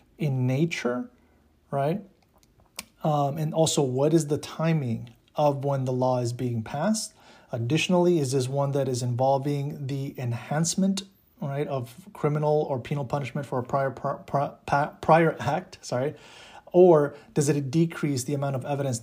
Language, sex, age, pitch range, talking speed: English, male, 30-49, 130-150 Hz, 150 wpm